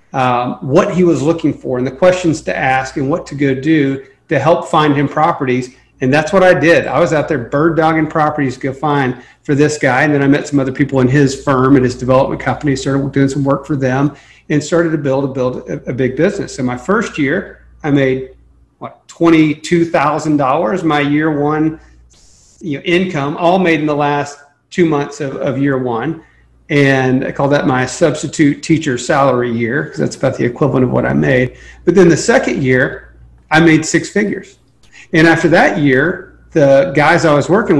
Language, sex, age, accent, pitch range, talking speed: English, male, 40-59, American, 135-155 Hz, 205 wpm